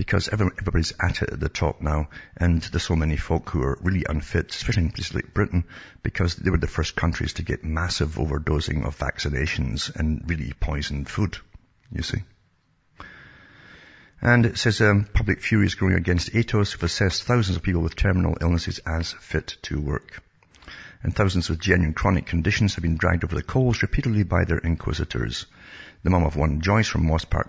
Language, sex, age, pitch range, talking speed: English, male, 60-79, 80-100 Hz, 185 wpm